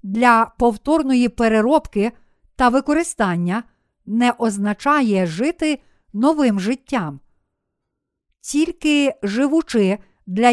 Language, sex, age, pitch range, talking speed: Ukrainian, female, 50-69, 220-280 Hz, 75 wpm